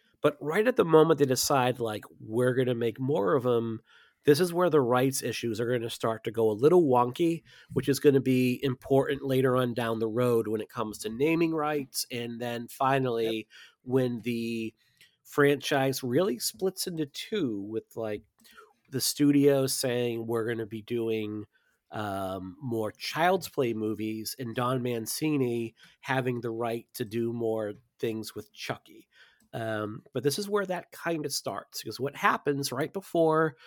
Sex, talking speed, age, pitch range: male, 175 wpm, 40-59, 115-140 Hz